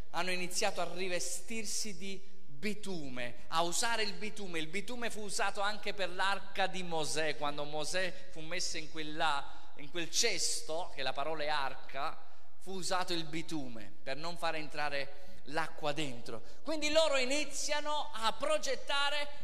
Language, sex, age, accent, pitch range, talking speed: Italian, male, 20-39, native, 185-265 Hz, 150 wpm